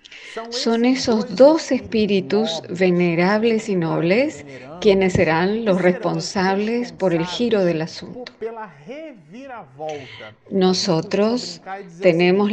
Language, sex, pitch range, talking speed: Spanish, female, 175-215 Hz, 85 wpm